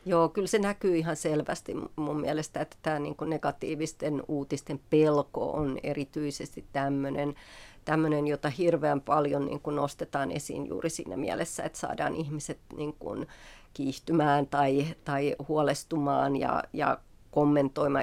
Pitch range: 145-155 Hz